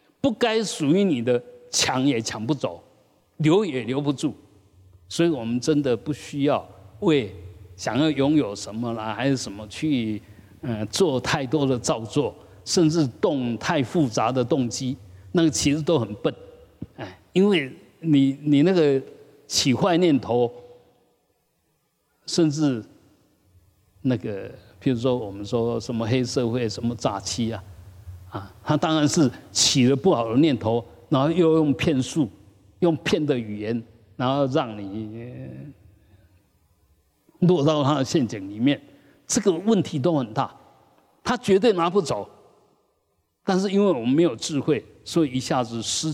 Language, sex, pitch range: Chinese, male, 105-155 Hz